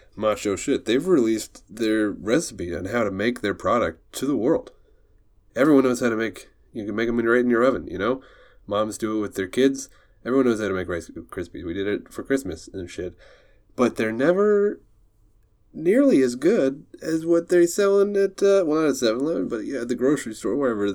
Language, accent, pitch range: English, American, 100-140 Hz